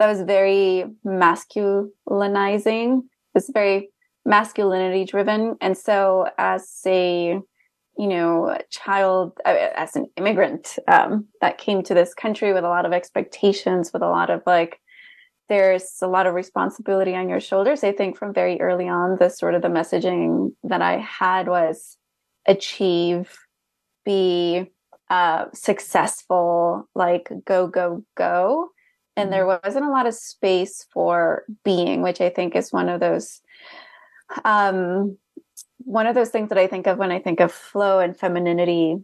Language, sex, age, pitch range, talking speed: English, female, 20-39, 180-215 Hz, 150 wpm